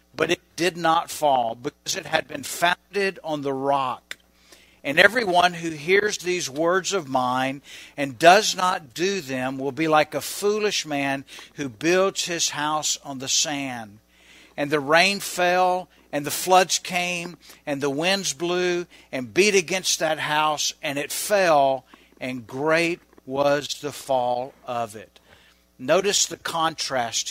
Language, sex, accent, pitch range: English, male, American, 125-175 Hz